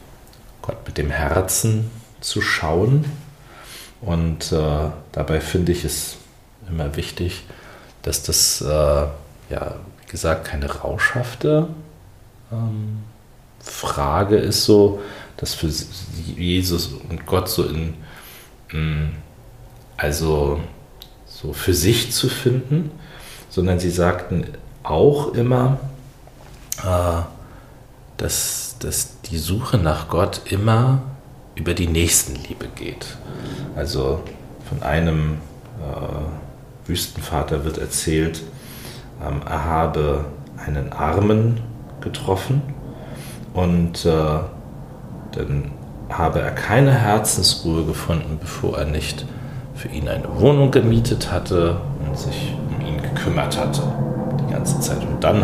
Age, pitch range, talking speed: 40-59, 80-125 Hz, 105 wpm